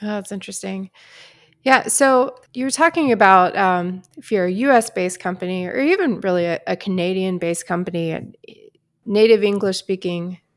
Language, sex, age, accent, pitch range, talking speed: English, female, 20-39, American, 180-225 Hz, 130 wpm